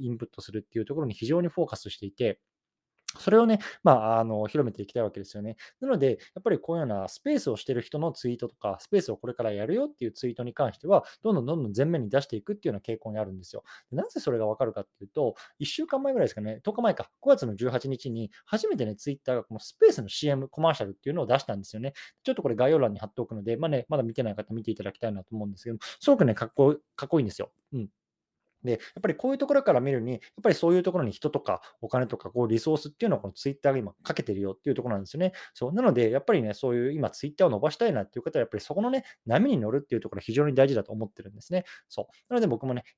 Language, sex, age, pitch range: Japanese, male, 20-39, 110-155 Hz